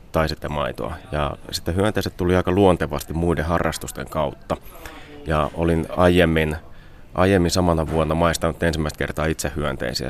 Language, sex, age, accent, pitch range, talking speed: Finnish, male, 30-49, native, 75-90 Hz, 135 wpm